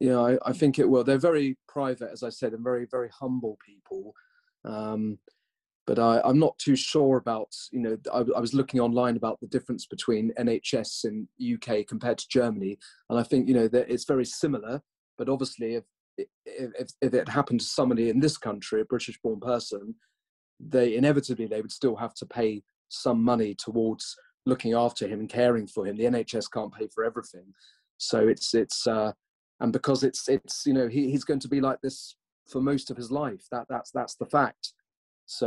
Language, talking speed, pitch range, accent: English, 205 wpm, 115-135 Hz, British